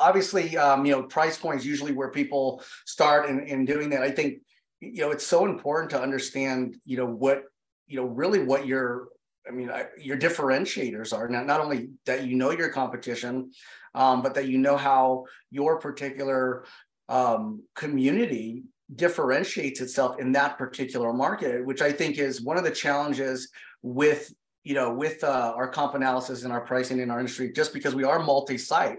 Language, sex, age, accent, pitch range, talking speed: English, male, 30-49, American, 130-155 Hz, 180 wpm